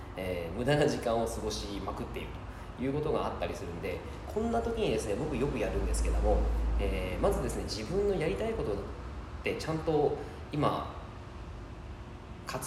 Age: 20-39